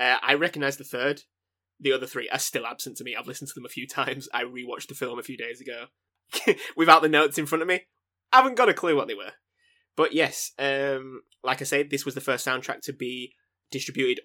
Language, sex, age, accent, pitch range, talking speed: English, male, 20-39, British, 130-155 Hz, 240 wpm